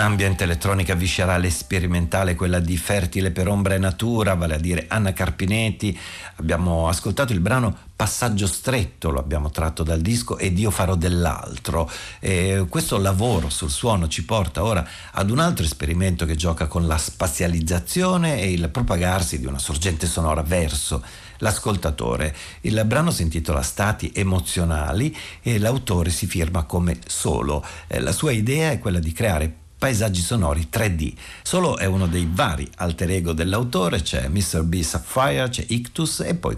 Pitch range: 85-110 Hz